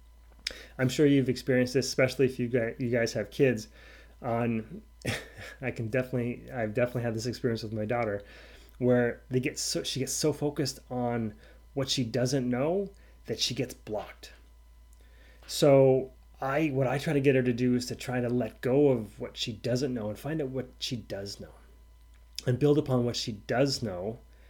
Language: English